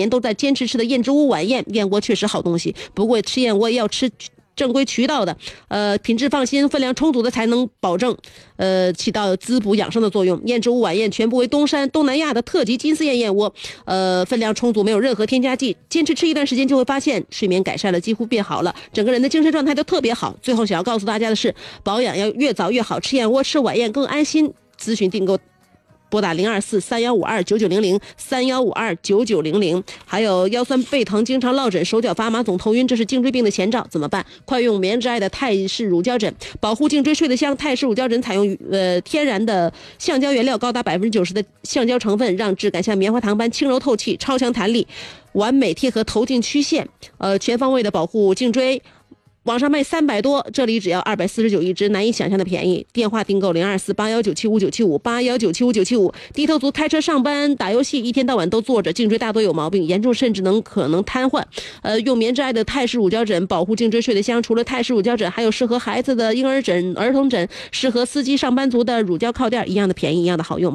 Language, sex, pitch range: Chinese, female, 200-260 Hz